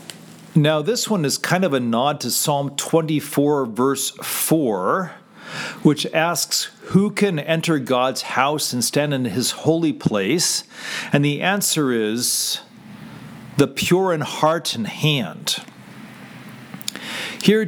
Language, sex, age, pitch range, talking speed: English, male, 40-59, 140-190 Hz, 125 wpm